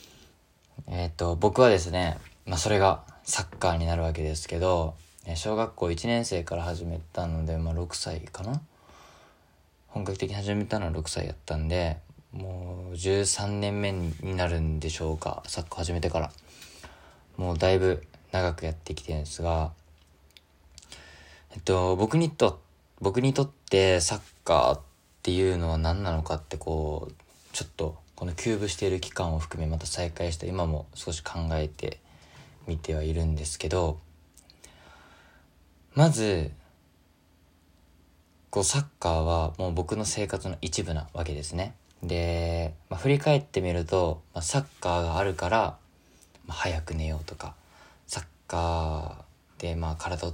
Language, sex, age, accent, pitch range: Japanese, male, 20-39, native, 80-90 Hz